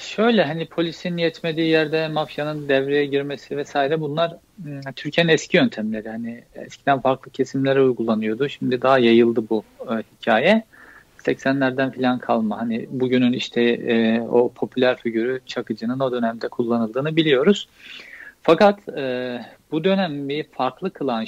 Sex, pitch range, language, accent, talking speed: male, 120-150 Hz, Turkish, native, 125 wpm